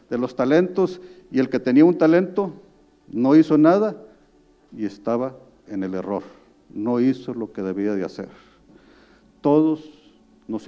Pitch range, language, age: 110-160 Hz, Spanish, 50-69